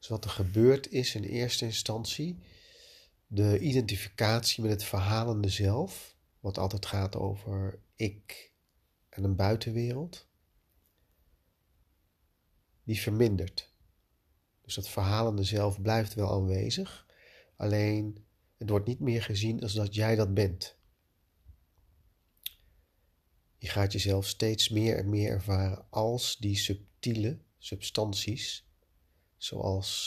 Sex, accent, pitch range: male, Dutch, 85-110 Hz